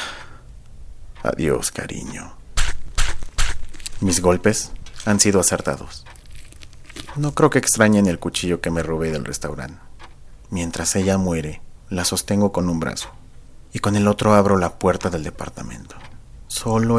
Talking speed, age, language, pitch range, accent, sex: 125 wpm, 40-59, Spanish, 80-105 Hz, Mexican, male